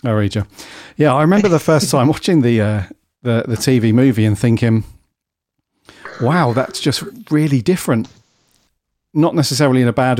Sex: male